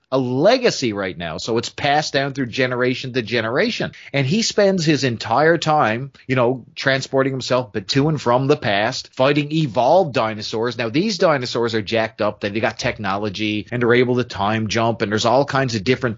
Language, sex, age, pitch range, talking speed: English, male, 30-49, 120-150 Hz, 190 wpm